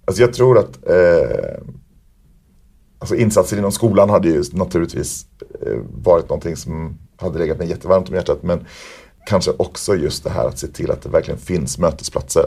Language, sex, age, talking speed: Swedish, male, 40-59, 170 wpm